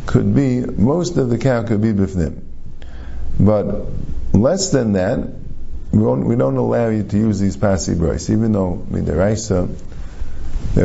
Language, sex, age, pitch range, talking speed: English, male, 50-69, 90-125 Hz, 160 wpm